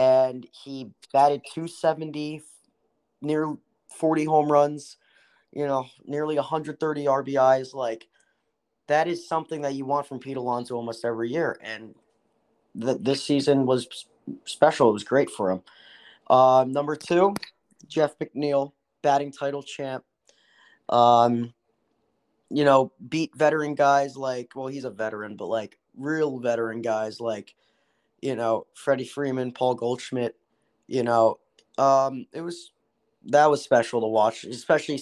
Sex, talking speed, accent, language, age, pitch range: male, 135 wpm, American, English, 20-39, 130-155 Hz